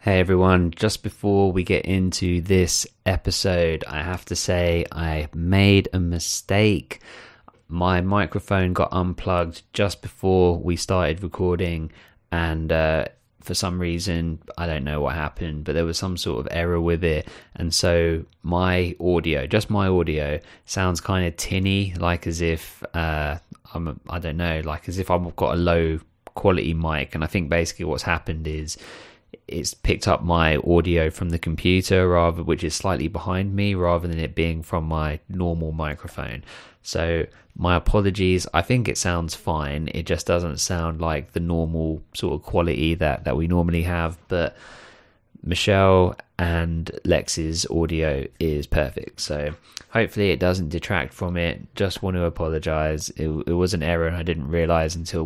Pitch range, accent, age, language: 80-90 Hz, British, 20-39, English